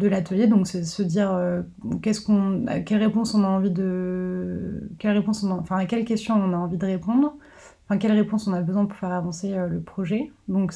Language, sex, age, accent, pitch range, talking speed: French, female, 30-49, French, 180-200 Hz, 245 wpm